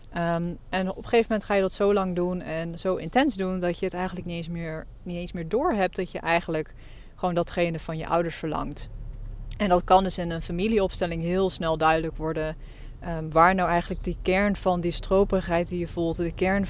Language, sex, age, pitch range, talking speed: Dutch, female, 20-39, 170-200 Hz, 210 wpm